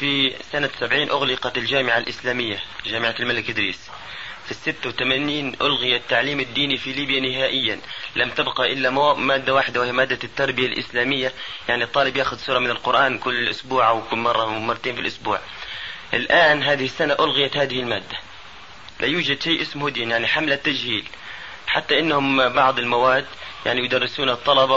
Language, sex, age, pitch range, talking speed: Arabic, male, 30-49, 120-145 Hz, 150 wpm